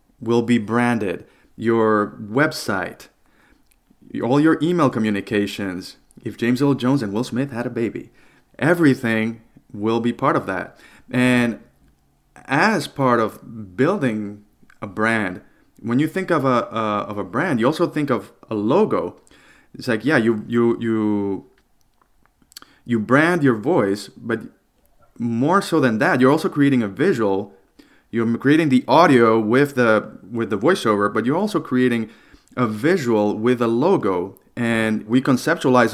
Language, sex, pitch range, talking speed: English, male, 110-135 Hz, 145 wpm